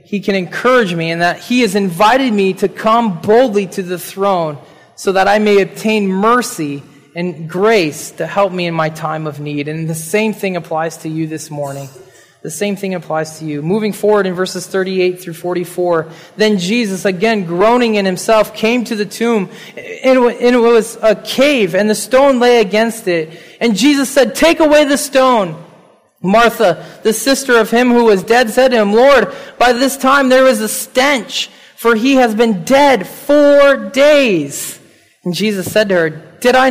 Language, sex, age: English, male, 20-39